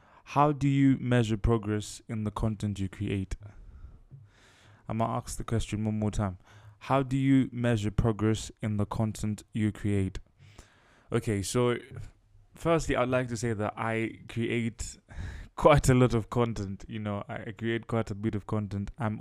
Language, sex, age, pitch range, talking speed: English, male, 20-39, 100-115 Hz, 170 wpm